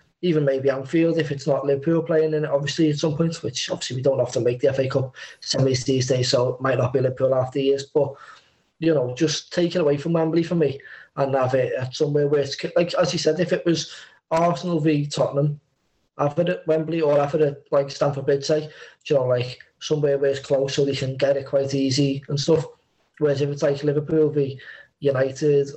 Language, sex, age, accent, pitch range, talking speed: English, male, 20-39, British, 130-155 Hz, 225 wpm